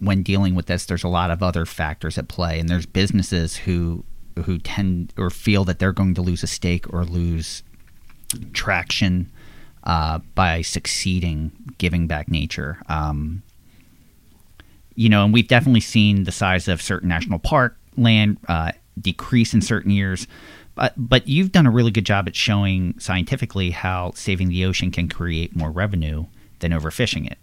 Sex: male